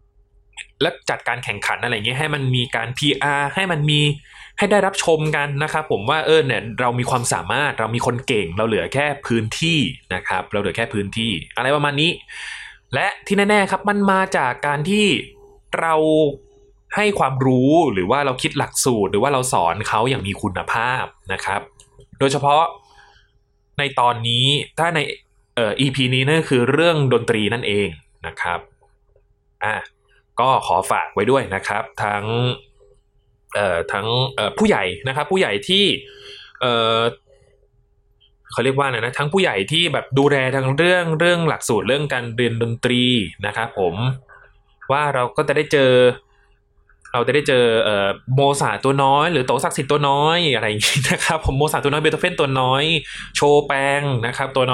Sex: male